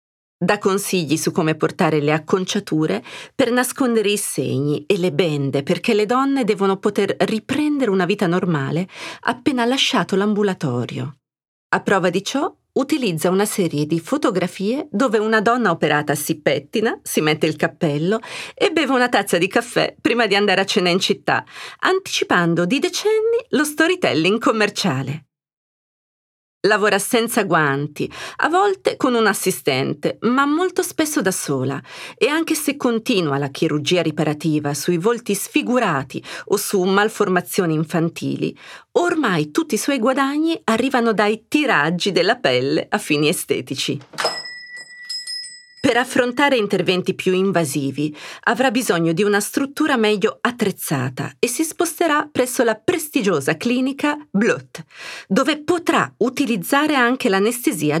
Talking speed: 135 wpm